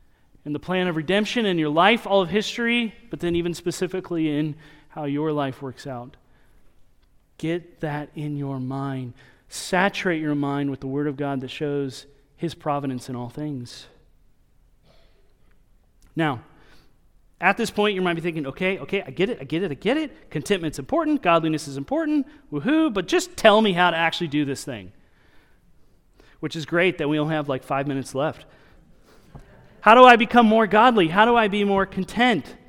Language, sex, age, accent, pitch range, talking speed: English, male, 30-49, American, 145-200 Hz, 180 wpm